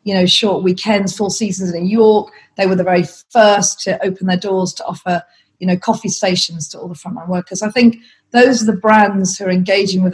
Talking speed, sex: 230 wpm, female